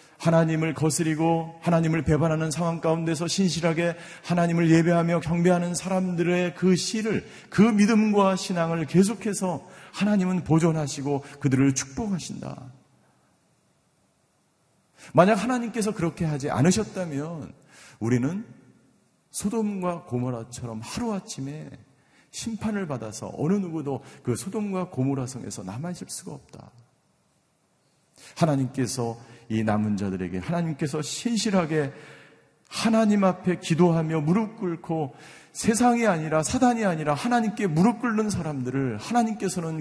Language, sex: Korean, male